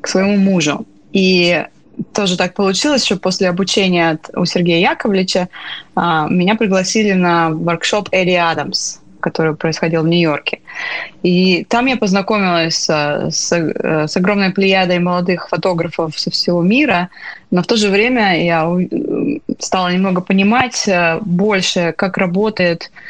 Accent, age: native, 20-39